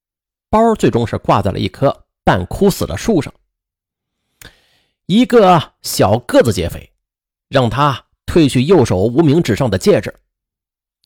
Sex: male